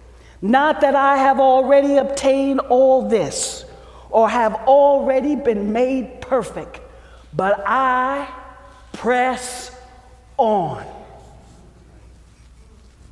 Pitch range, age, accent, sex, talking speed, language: 190-275 Hz, 40-59, American, male, 80 wpm, English